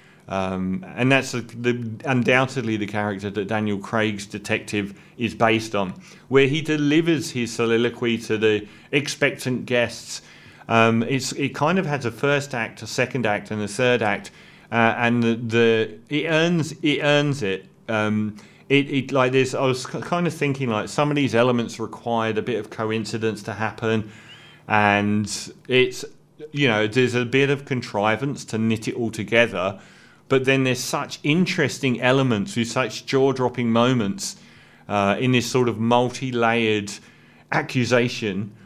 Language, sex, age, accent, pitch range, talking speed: English, male, 40-59, British, 110-140 Hz, 160 wpm